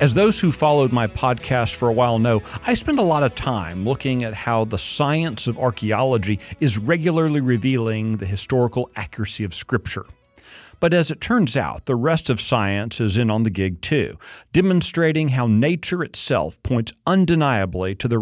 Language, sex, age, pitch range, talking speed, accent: English, male, 40-59, 110-150 Hz, 180 wpm, American